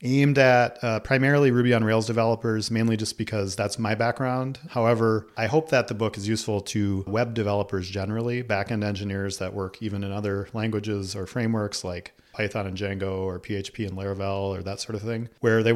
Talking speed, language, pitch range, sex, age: 195 wpm, English, 100-120 Hz, male, 40-59